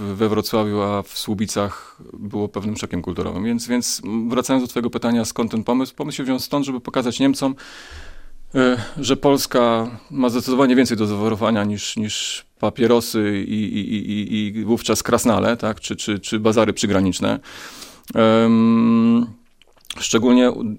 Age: 30-49